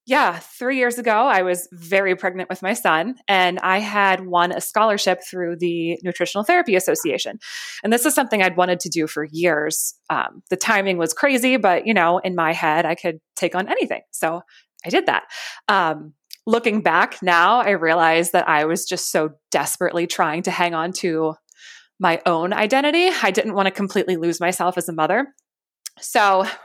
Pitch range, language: 170-220 Hz, English